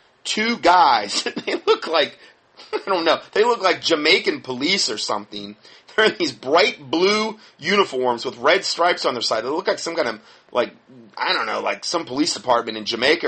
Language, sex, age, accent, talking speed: English, male, 30-49, American, 195 wpm